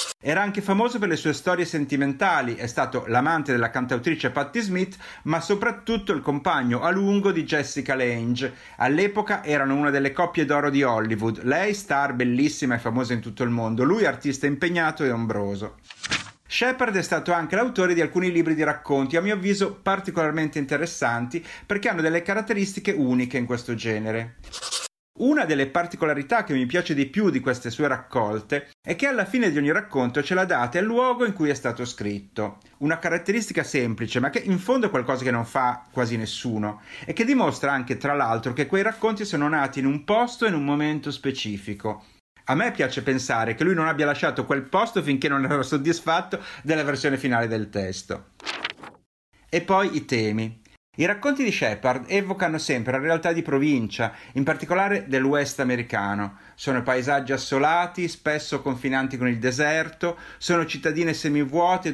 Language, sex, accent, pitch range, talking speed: Italian, male, native, 130-175 Hz, 175 wpm